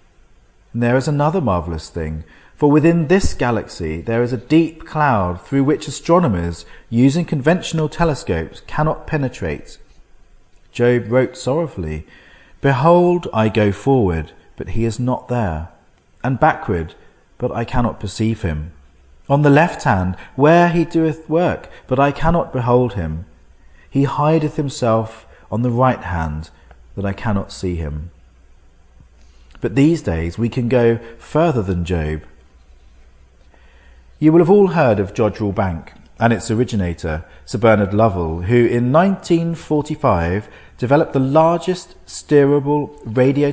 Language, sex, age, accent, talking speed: English, male, 40-59, British, 135 wpm